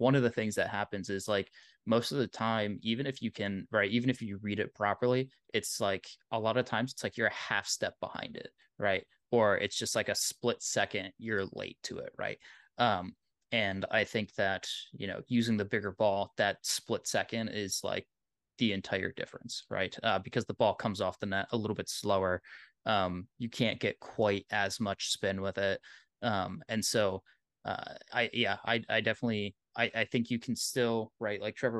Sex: male